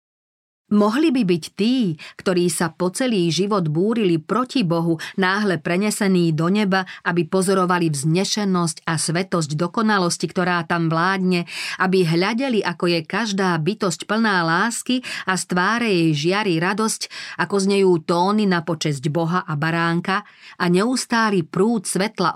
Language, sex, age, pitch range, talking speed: Slovak, female, 40-59, 165-200 Hz, 135 wpm